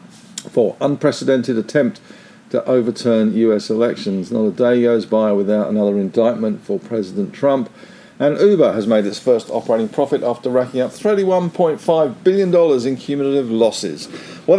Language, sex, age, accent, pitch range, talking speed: English, male, 50-69, British, 110-160 Hz, 145 wpm